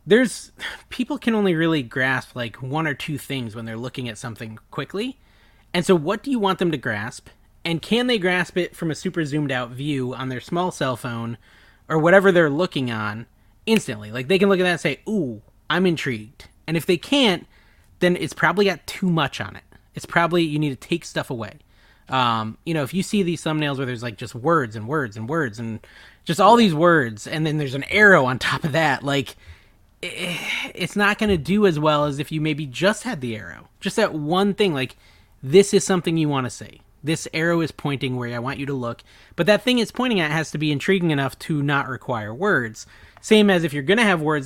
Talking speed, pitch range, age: 230 wpm, 120-180 Hz, 20-39